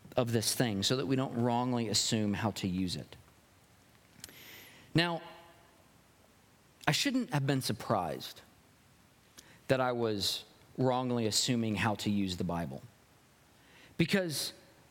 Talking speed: 120 wpm